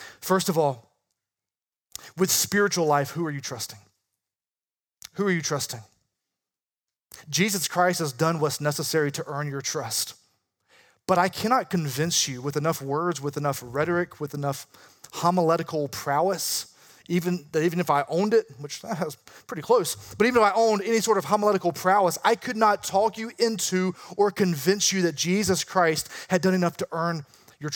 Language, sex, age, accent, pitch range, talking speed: English, male, 30-49, American, 140-185 Hz, 170 wpm